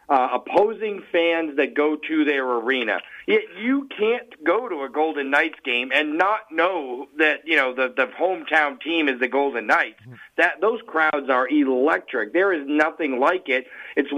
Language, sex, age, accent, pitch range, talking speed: English, male, 50-69, American, 140-180 Hz, 180 wpm